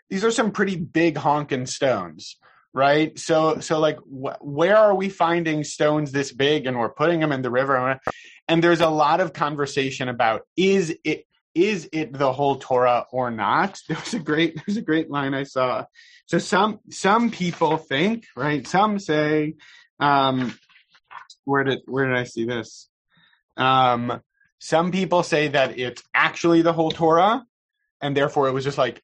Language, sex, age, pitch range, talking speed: English, male, 30-49, 130-170 Hz, 175 wpm